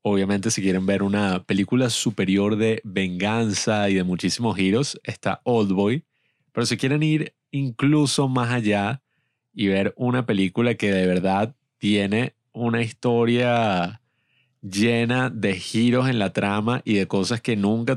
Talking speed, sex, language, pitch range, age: 145 wpm, male, Spanish, 100-130 Hz, 30-49